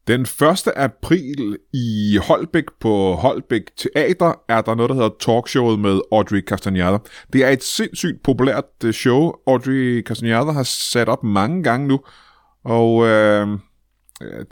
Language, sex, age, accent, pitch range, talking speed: Danish, male, 30-49, native, 100-130 Hz, 135 wpm